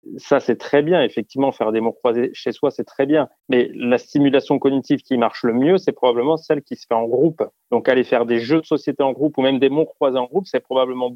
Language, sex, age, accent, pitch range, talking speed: French, male, 30-49, French, 130-160 Hz, 260 wpm